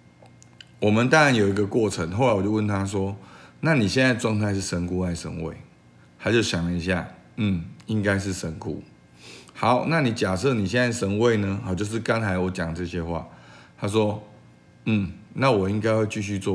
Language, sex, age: Chinese, male, 50-69